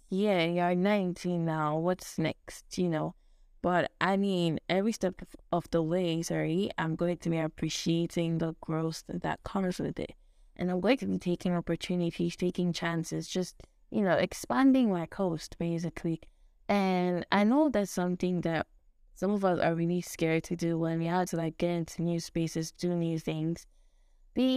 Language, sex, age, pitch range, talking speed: English, female, 10-29, 165-185 Hz, 175 wpm